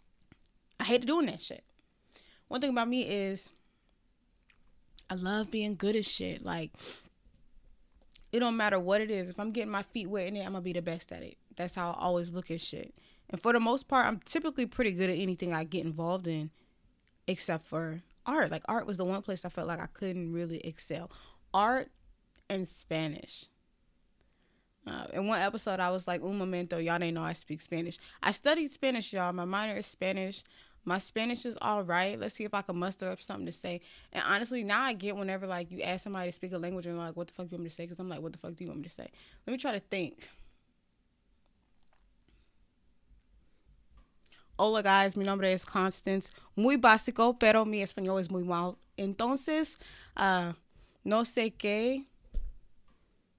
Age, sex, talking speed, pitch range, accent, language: 20-39, female, 200 wpm, 175-220 Hz, American, English